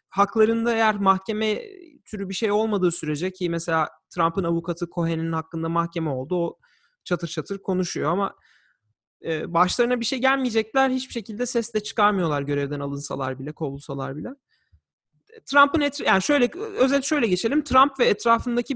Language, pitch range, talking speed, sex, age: Turkish, 175-235 Hz, 145 wpm, male, 30-49